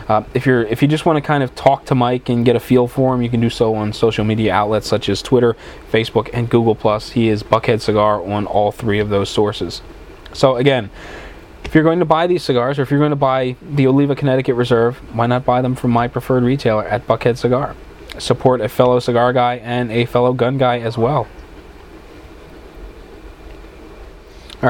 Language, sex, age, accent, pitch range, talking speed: English, male, 20-39, American, 115-140 Hz, 210 wpm